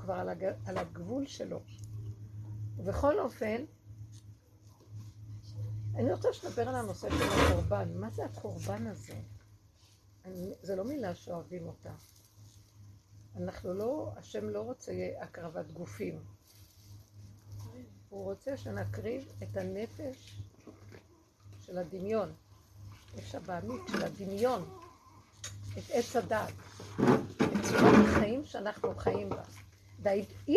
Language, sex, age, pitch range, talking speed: Hebrew, female, 50-69, 95-115 Hz, 100 wpm